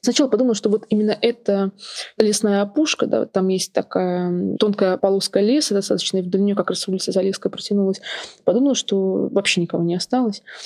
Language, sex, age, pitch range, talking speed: Russian, female, 20-39, 190-210 Hz, 170 wpm